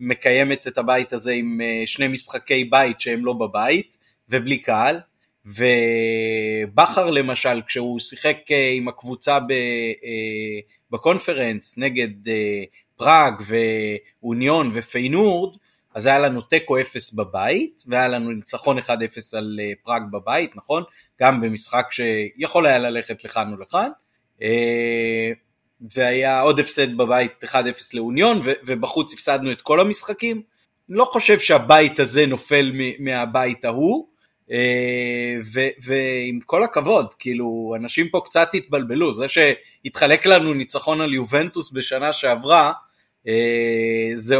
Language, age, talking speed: Hebrew, 30-49, 115 wpm